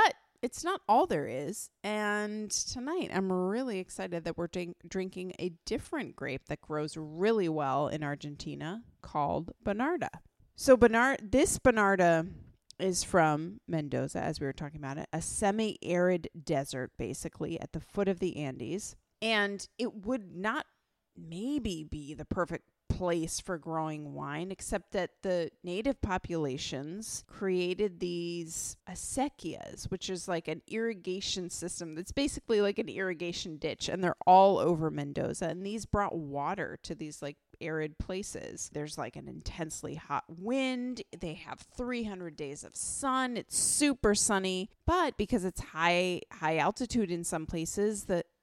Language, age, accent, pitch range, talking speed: English, 30-49, American, 160-210 Hz, 145 wpm